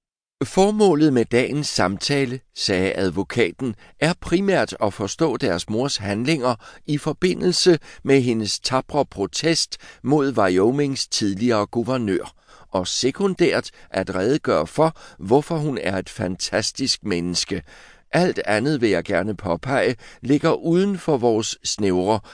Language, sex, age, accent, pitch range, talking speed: Danish, male, 60-79, native, 100-145 Hz, 120 wpm